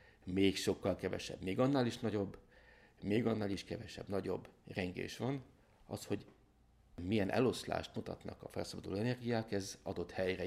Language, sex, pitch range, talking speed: Hungarian, male, 95-115 Hz, 145 wpm